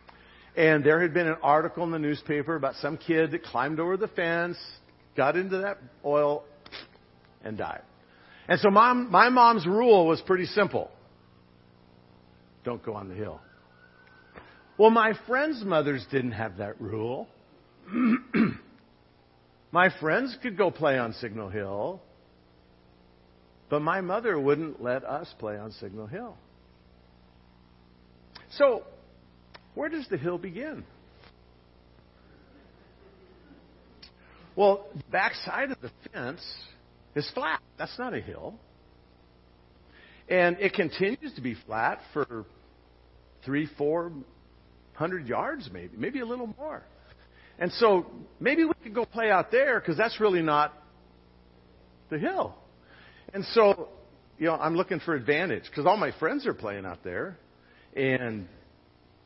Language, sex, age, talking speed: English, male, 50-69, 130 wpm